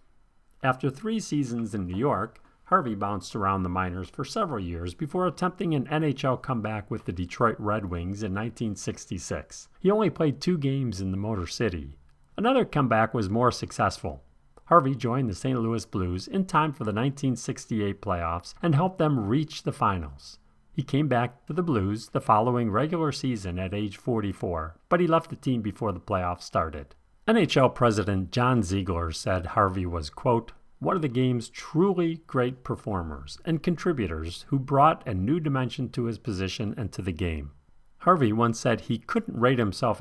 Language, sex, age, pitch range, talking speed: English, male, 50-69, 95-140 Hz, 175 wpm